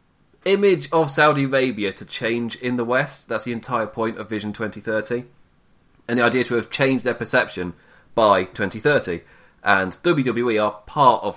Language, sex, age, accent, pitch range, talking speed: English, male, 30-49, British, 110-140 Hz, 165 wpm